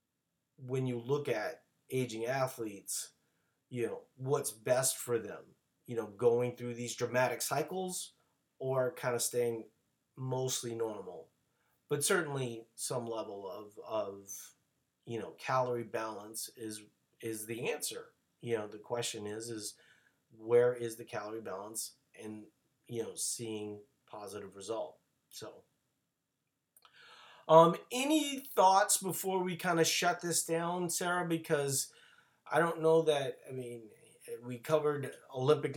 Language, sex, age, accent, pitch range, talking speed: English, male, 30-49, American, 120-170 Hz, 130 wpm